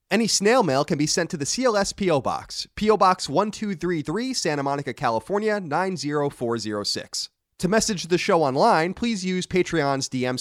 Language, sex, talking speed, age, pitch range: English, male, 155 wpm, 30-49, 125-185 Hz